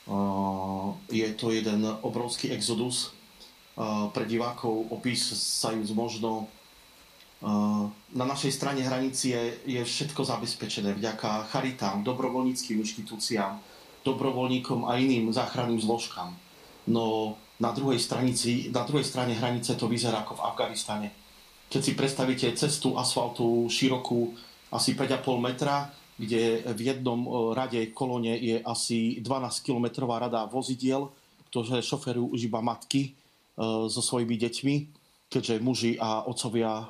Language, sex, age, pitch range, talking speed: Slovak, male, 40-59, 115-130 Hz, 120 wpm